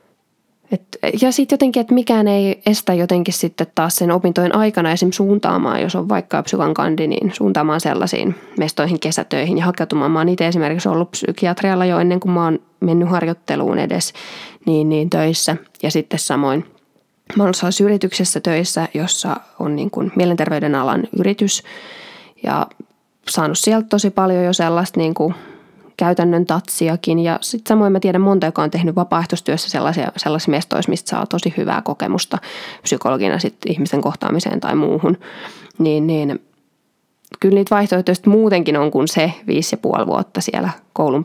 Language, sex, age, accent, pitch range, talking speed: Finnish, female, 20-39, native, 160-190 Hz, 155 wpm